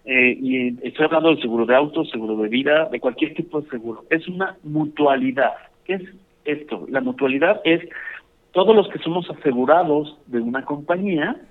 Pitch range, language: 140-175 Hz, Spanish